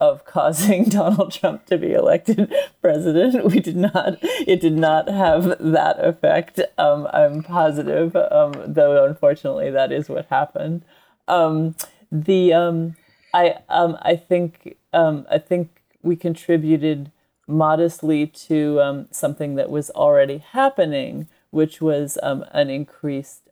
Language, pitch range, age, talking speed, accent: English, 135-190 Hz, 30-49, 135 wpm, American